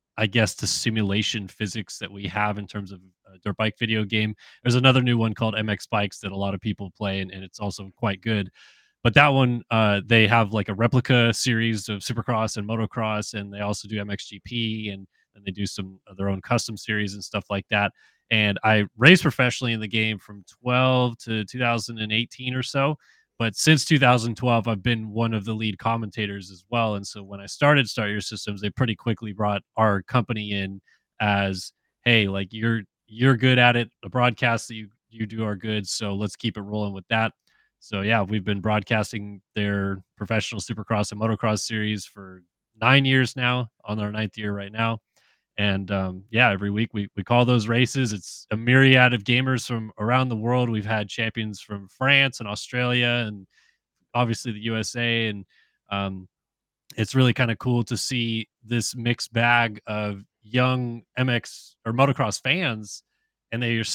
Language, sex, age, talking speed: English, male, 20-39, 190 wpm